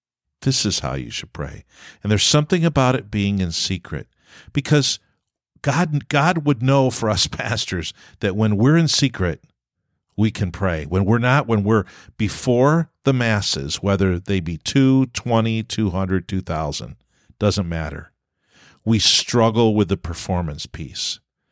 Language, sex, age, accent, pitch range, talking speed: English, male, 50-69, American, 90-120 Hz, 150 wpm